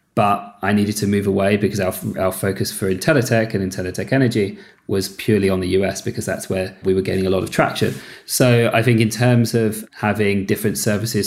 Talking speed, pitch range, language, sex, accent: 215 wpm, 95-110 Hz, English, male, British